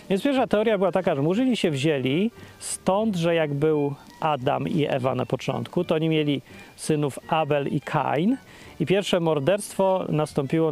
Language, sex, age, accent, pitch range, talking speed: Polish, male, 40-59, native, 140-185 Hz, 160 wpm